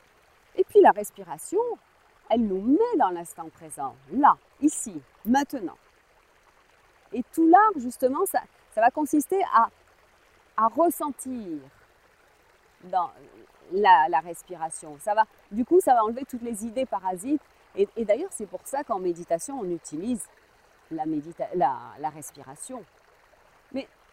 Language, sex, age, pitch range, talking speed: French, female, 40-59, 185-300 Hz, 125 wpm